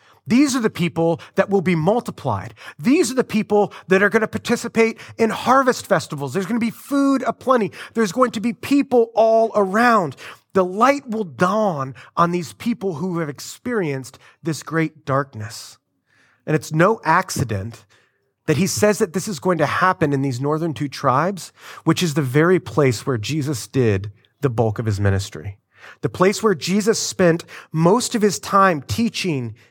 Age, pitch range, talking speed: 30-49, 125-195 Hz, 175 wpm